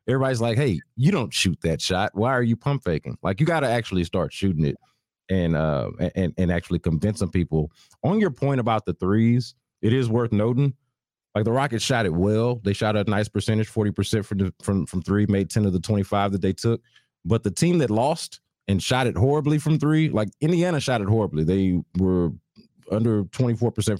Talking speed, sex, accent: 210 wpm, male, American